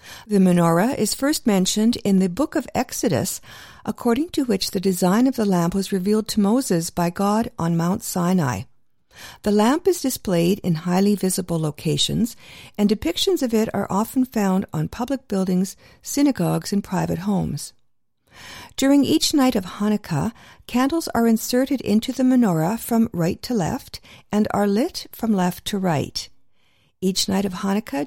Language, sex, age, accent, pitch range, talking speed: English, female, 50-69, American, 175-245 Hz, 160 wpm